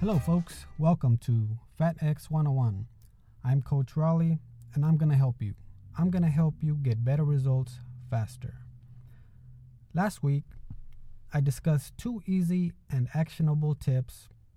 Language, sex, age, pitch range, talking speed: English, male, 20-39, 115-155 Hz, 130 wpm